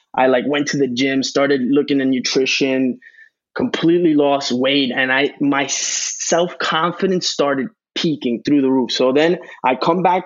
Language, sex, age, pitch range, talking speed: English, male, 20-39, 140-180 Hz, 160 wpm